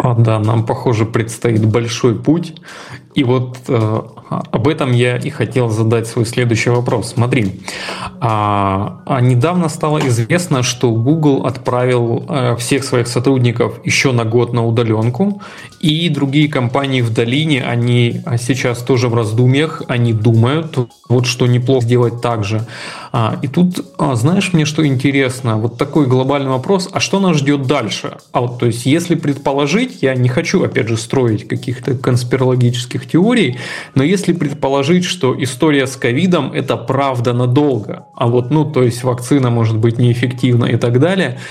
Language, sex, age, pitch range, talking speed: Russian, male, 20-39, 120-145 Hz, 155 wpm